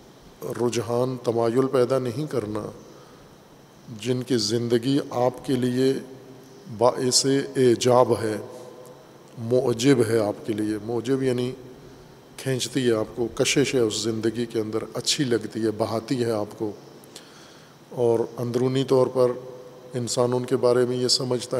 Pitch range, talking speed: 115-130 Hz, 135 wpm